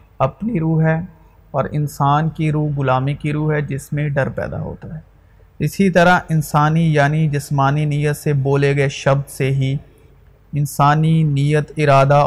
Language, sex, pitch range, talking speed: Urdu, male, 140-165 Hz, 155 wpm